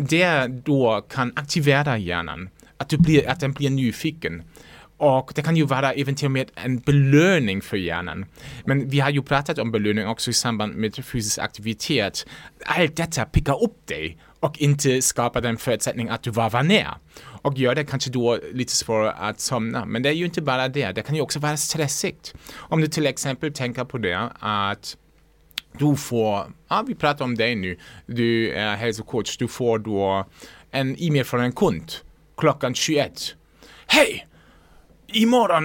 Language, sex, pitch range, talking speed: Swedish, male, 115-155 Hz, 175 wpm